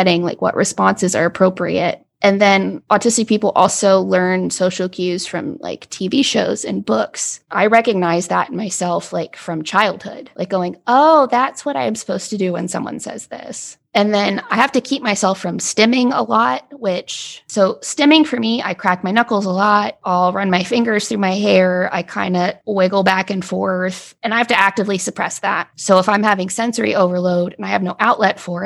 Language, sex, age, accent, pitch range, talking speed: English, female, 20-39, American, 185-225 Hz, 200 wpm